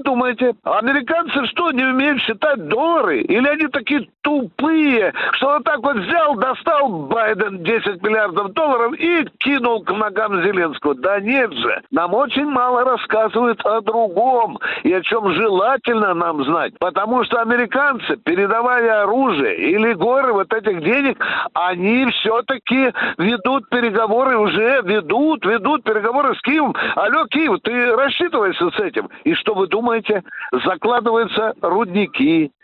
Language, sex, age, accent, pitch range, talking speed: Russian, male, 50-69, native, 220-295 Hz, 135 wpm